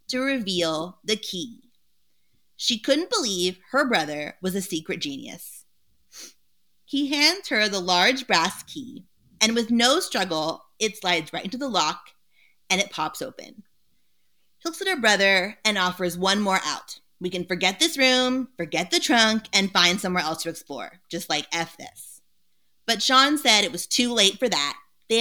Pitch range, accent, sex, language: 175-255 Hz, American, female, English